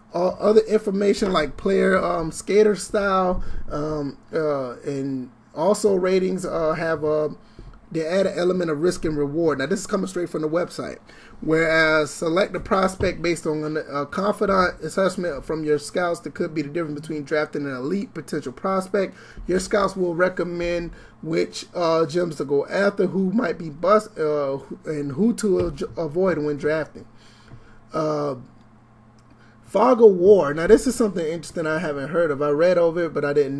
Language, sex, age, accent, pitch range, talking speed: English, male, 30-49, American, 150-190 Hz, 170 wpm